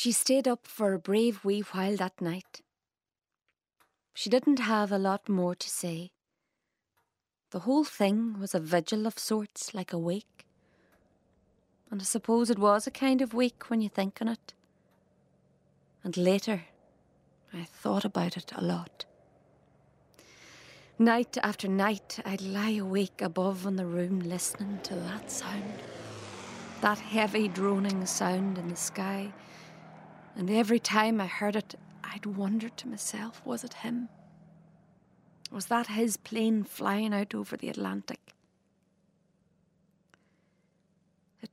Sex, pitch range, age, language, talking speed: female, 185-225 Hz, 30-49, English, 135 wpm